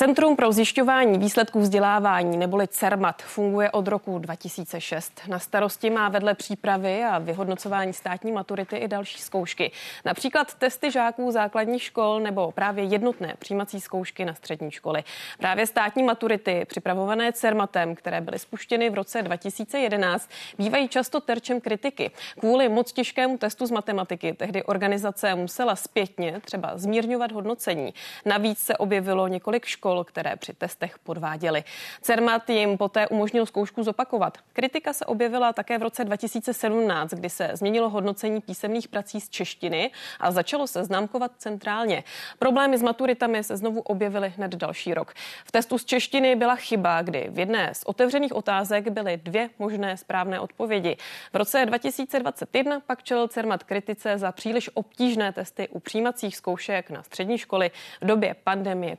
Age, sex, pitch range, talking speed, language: 30-49, female, 190-235 Hz, 150 wpm, Czech